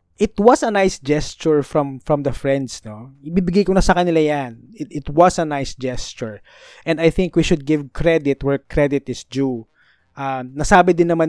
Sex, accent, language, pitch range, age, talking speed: male, native, Filipino, 130-175 Hz, 20-39, 195 wpm